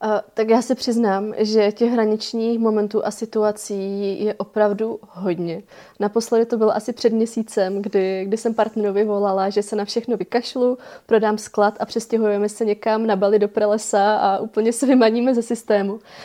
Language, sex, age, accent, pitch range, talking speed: Czech, female, 20-39, native, 195-220 Hz, 165 wpm